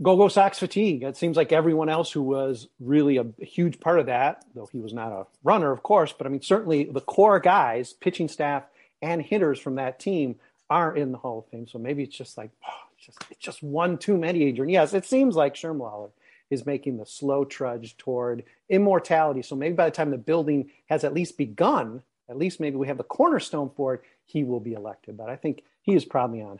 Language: English